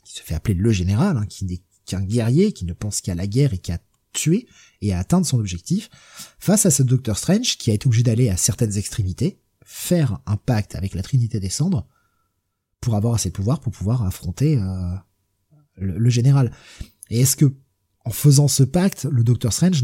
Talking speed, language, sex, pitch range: 205 wpm, French, male, 100-145 Hz